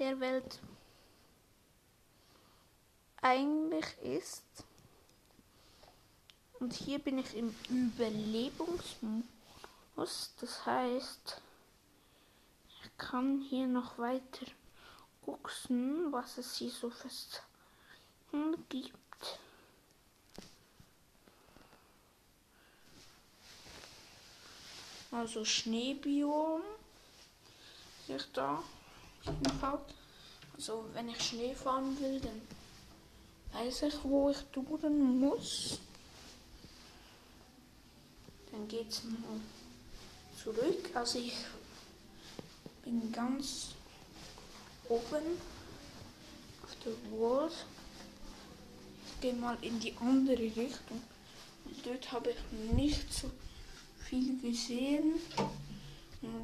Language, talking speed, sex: German, 75 wpm, female